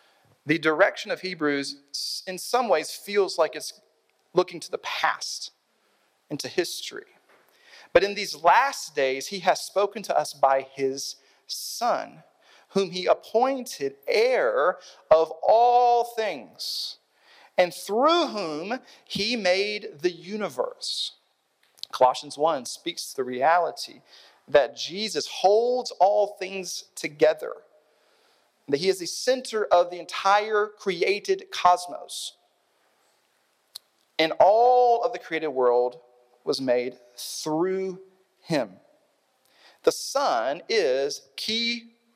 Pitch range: 160-255 Hz